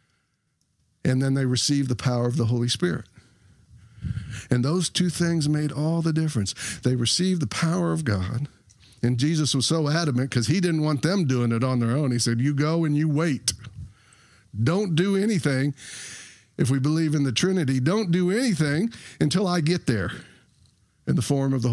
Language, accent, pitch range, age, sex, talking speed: English, American, 115-155 Hz, 50-69, male, 185 wpm